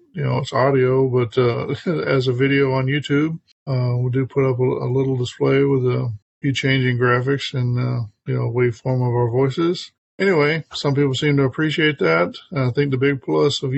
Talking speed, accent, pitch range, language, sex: 195 wpm, American, 125-145 Hz, English, male